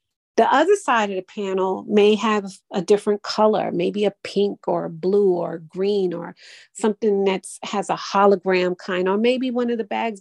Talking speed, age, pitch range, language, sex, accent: 180 wpm, 40-59, 180-210 Hz, English, female, American